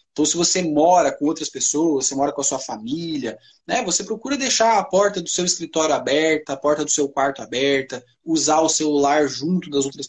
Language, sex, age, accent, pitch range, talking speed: Portuguese, male, 20-39, Brazilian, 150-230 Hz, 210 wpm